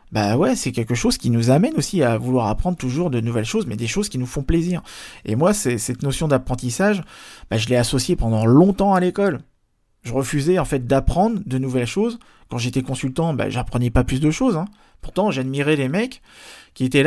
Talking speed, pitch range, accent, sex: 205 wpm, 115-160 Hz, French, male